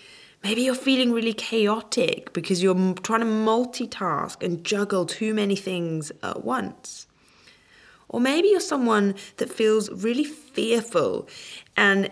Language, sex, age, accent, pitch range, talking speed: English, female, 20-39, British, 155-220 Hz, 130 wpm